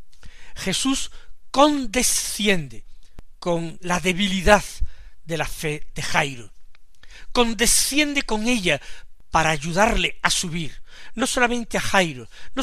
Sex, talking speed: male, 105 wpm